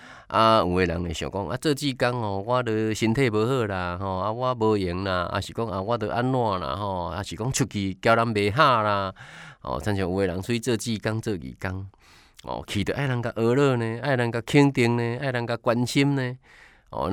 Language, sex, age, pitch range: Chinese, male, 20-39, 95-130 Hz